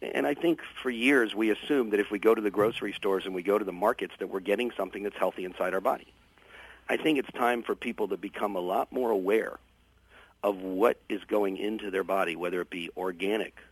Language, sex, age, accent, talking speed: English, male, 50-69, American, 230 wpm